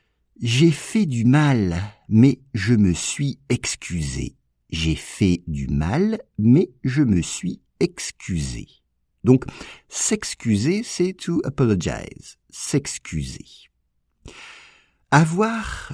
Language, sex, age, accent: English, male, 50-69, French